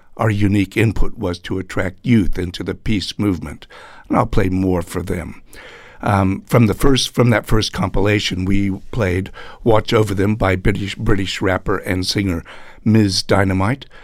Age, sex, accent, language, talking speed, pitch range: 60-79, male, American, English, 160 wpm, 90-105 Hz